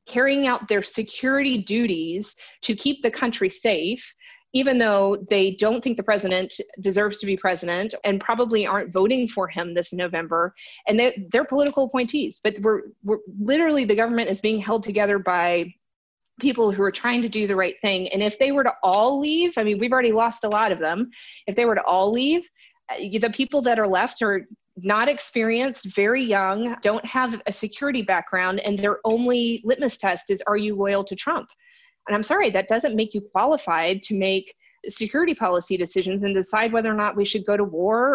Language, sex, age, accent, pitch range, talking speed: English, female, 30-49, American, 195-250 Hz, 195 wpm